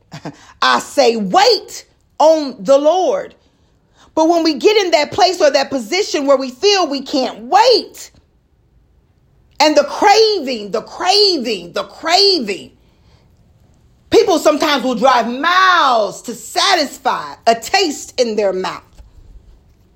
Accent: American